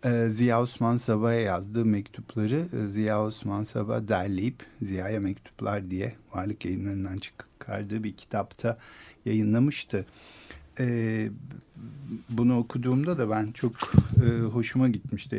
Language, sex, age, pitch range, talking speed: Turkish, male, 50-69, 105-135 Hz, 100 wpm